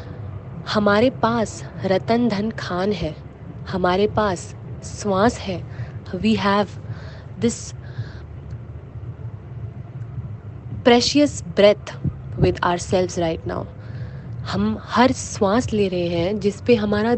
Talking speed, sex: 100 wpm, female